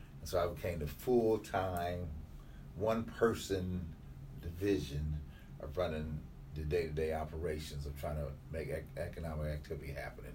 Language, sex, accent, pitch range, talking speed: English, male, American, 75-105 Hz, 115 wpm